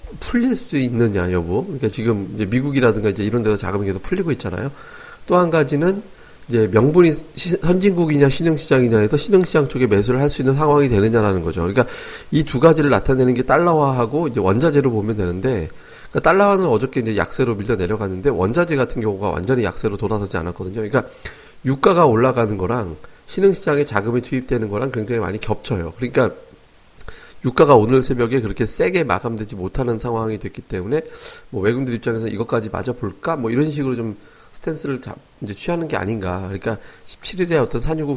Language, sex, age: Korean, male, 30-49